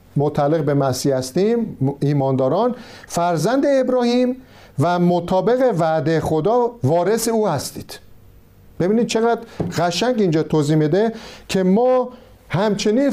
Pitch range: 150-220 Hz